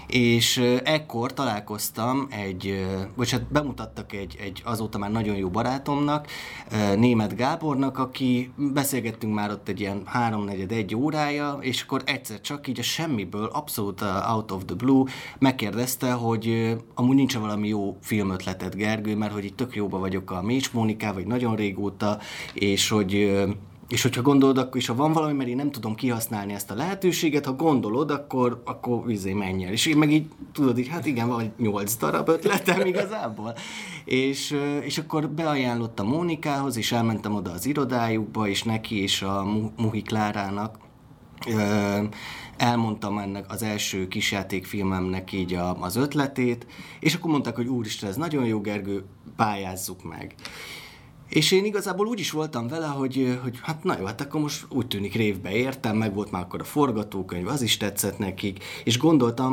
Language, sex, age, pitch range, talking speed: Hungarian, male, 30-49, 100-130 Hz, 160 wpm